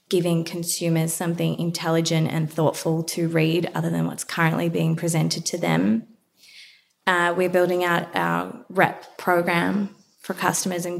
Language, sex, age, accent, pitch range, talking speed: English, female, 20-39, Australian, 165-190 Hz, 140 wpm